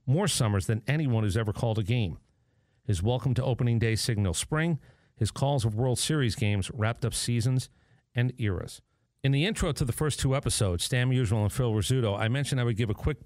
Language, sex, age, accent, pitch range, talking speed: English, male, 40-59, American, 105-130 Hz, 215 wpm